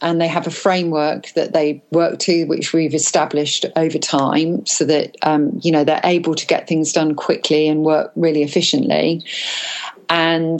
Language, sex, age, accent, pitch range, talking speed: English, female, 40-59, British, 150-170 Hz, 175 wpm